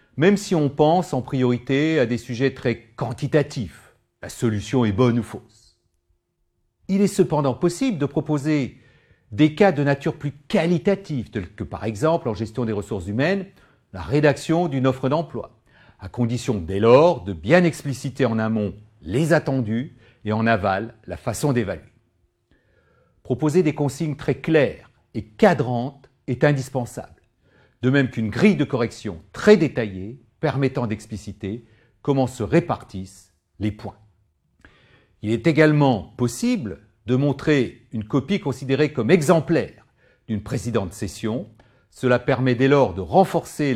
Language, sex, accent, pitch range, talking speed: French, male, French, 110-150 Hz, 145 wpm